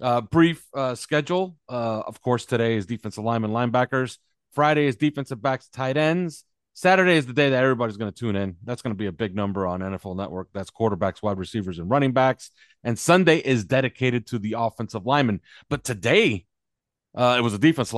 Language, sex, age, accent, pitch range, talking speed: English, male, 30-49, American, 105-140 Hz, 200 wpm